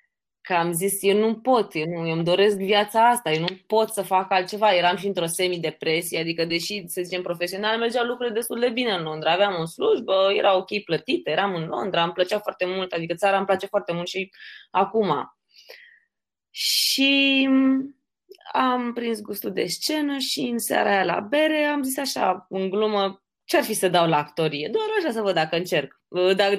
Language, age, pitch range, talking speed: Romanian, 20-39, 180-240 Hz, 195 wpm